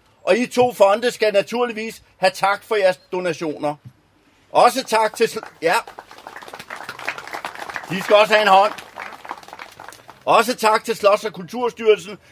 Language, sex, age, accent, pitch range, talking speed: Danish, male, 40-59, native, 175-230 Hz, 130 wpm